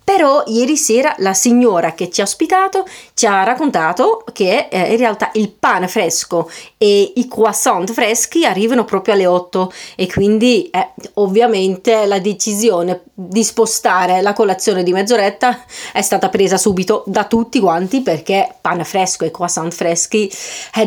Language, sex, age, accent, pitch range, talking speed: Italian, female, 30-49, native, 195-250 Hz, 150 wpm